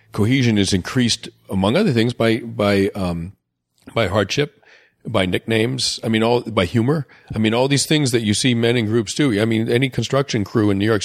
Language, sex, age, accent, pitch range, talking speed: English, male, 40-59, American, 95-125 Hz, 205 wpm